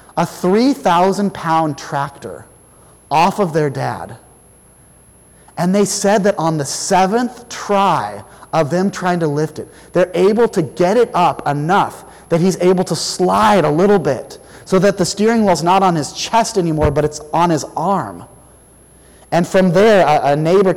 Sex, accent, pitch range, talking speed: male, American, 155-195 Hz, 165 wpm